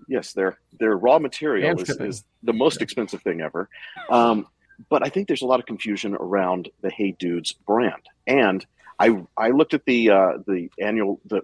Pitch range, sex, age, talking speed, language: 95-115 Hz, male, 40-59, 190 wpm, English